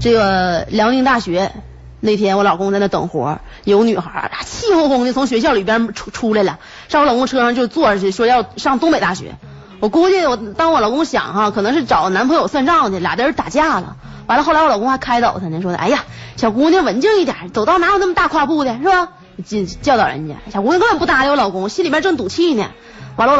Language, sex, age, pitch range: Chinese, female, 30-49, 200-310 Hz